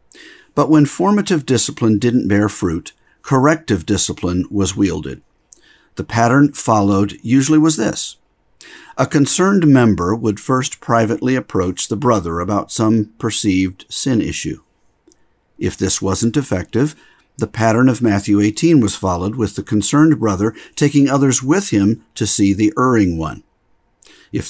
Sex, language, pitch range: male, English, 100-130 Hz